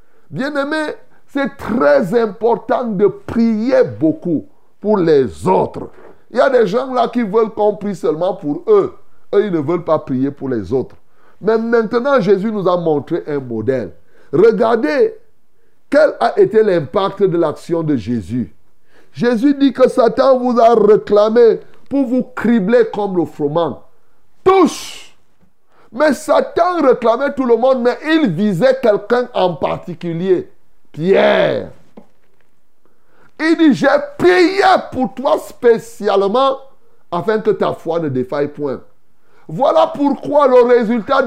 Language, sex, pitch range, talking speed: French, male, 185-275 Hz, 135 wpm